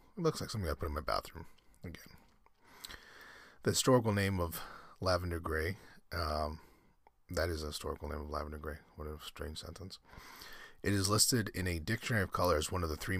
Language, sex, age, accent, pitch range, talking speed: English, male, 30-49, American, 75-95 Hz, 190 wpm